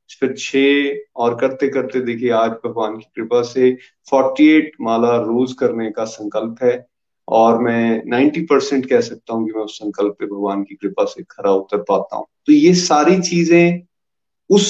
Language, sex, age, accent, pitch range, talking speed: Hindi, male, 30-49, native, 115-165 Hz, 180 wpm